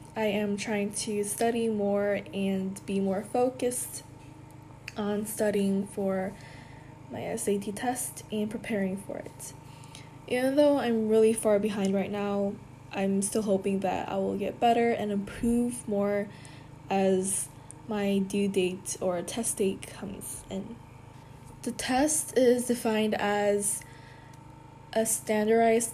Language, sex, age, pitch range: Korean, female, 10-29, 180-225 Hz